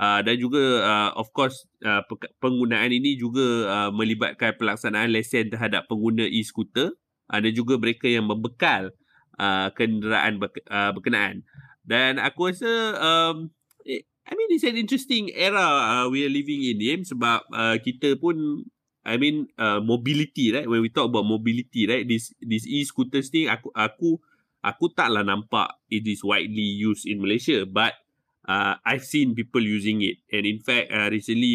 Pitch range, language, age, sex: 105-135 Hz, Malay, 30-49, male